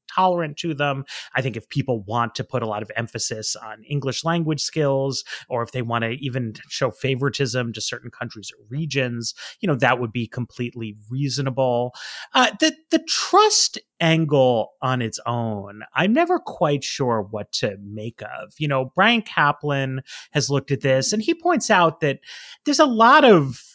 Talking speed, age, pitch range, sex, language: 180 wpm, 30-49, 115-165 Hz, male, English